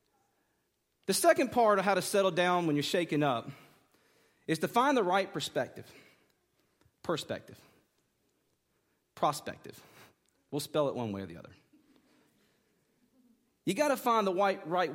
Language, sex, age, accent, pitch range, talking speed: English, male, 40-59, American, 120-190 Hz, 135 wpm